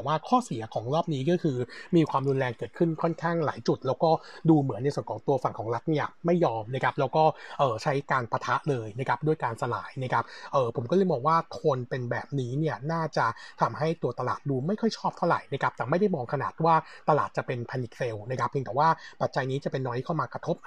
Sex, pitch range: male, 130-165 Hz